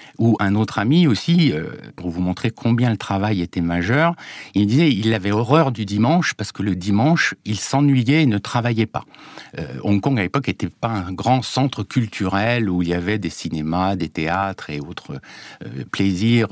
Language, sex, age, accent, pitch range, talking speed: French, male, 60-79, French, 90-125 Hz, 195 wpm